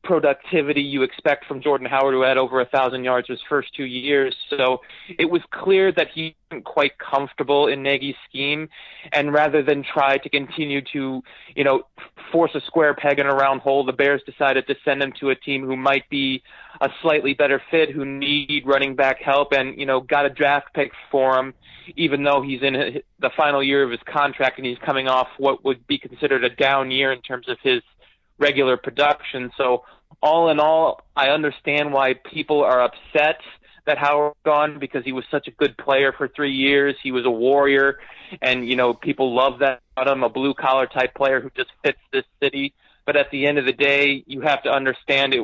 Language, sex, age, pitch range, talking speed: English, male, 30-49, 130-145 Hz, 210 wpm